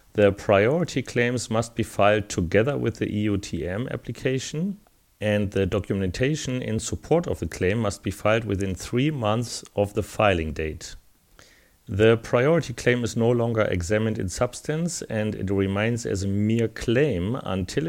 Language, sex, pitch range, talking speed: English, male, 95-120 Hz, 155 wpm